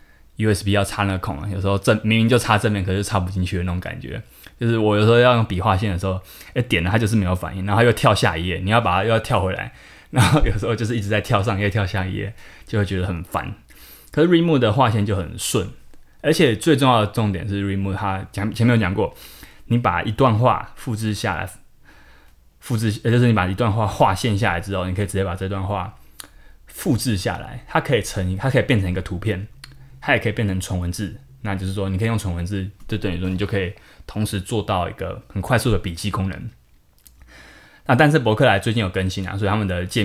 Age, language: 20-39, Chinese